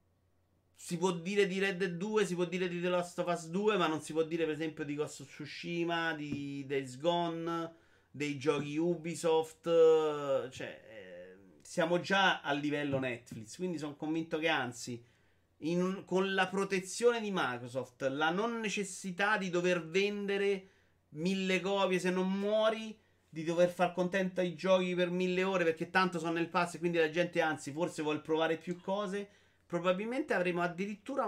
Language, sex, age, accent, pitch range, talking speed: Italian, male, 30-49, native, 130-190 Hz, 170 wpm